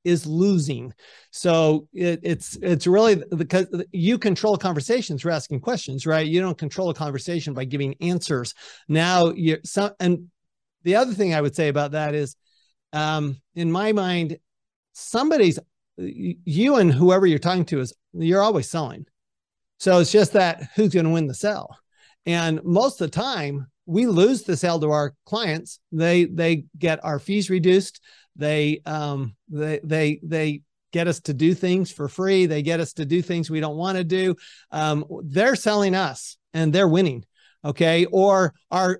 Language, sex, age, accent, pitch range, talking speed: English, male, 40-59, American, 155-190 Hz, 170 wpm